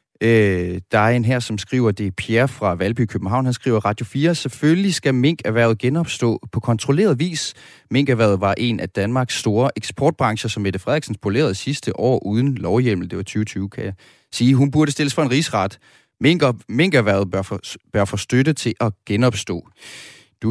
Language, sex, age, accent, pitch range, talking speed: Danish, male, 30-49, native, 105-140 Hz, 170 wpm